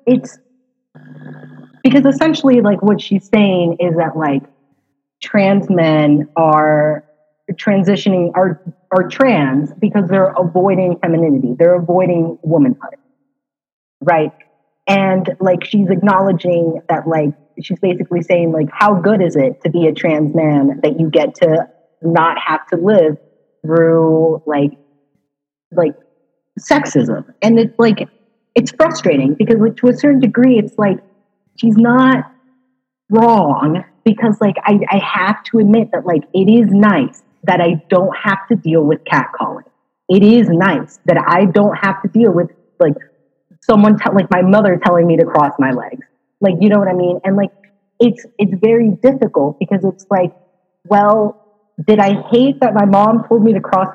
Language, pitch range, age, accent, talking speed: English, 165-220 Hz, 30-49, American, 155 wpm